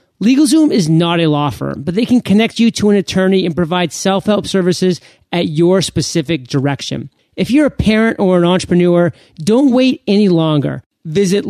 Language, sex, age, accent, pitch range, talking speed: English, male, 30-49, American, 155-205 Hz, 175 wpm